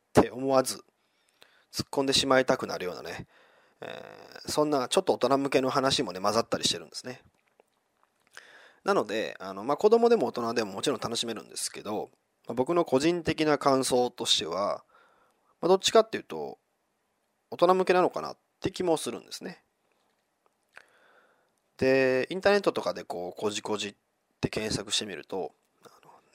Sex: male